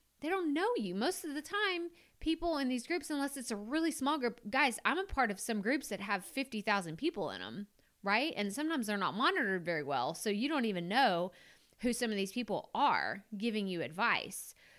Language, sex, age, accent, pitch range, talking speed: English, female, 30-49, American, 185-255 Hz, 215 wpm